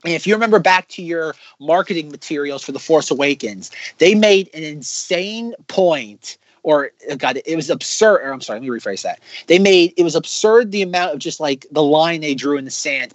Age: 30-49